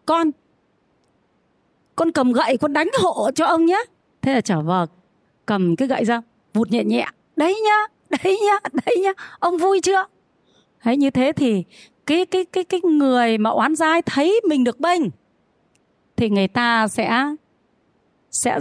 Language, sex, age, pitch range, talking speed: Vietnamese, female, 30-49, 215-305 Hz, 165 wpm